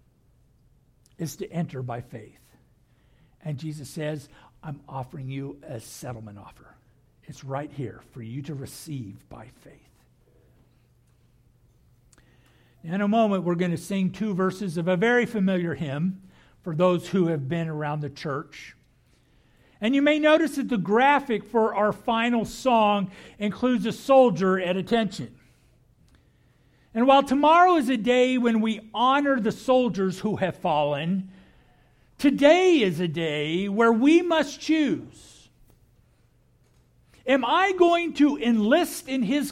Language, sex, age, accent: English, male, 50-69, American